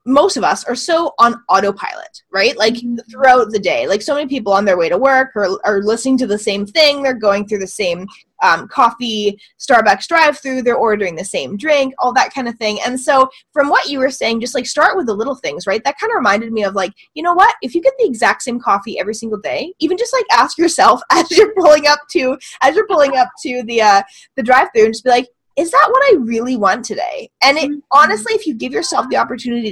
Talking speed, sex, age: 250 wpm, female, 20-39